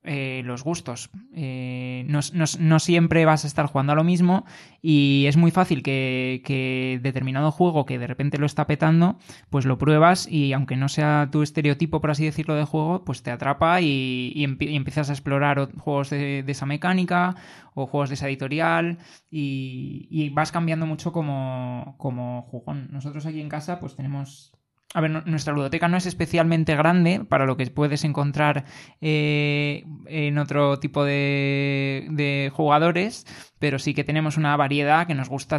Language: Spanish